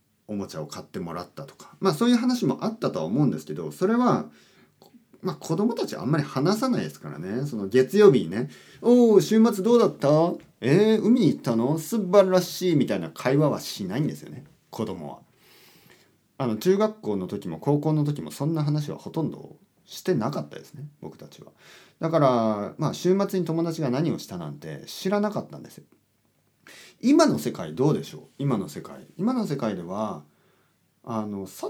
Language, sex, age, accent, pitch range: Japanese, male, 40-59, native, 120-195 Hz